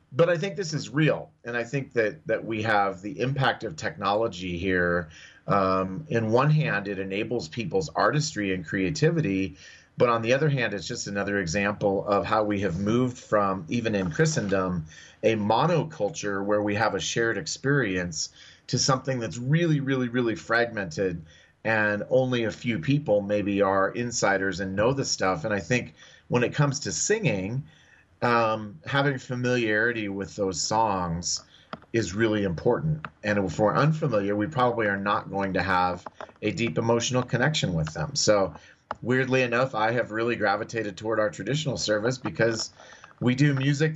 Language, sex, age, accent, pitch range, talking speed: English, male, 30-49, American, 100-130 Hz, 165 wpm